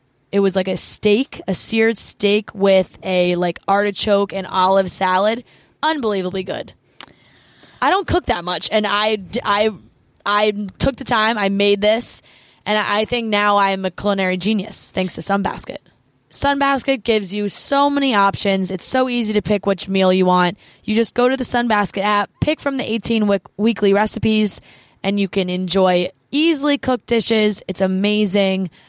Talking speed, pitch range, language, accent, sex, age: 170 wpm, 190-225 Hz, English, American, female, 20-39